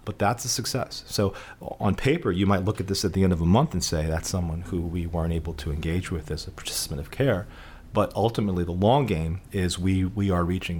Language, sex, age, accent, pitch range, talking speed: English, male, 40-59, American, 90-105 Hz, 245 wpm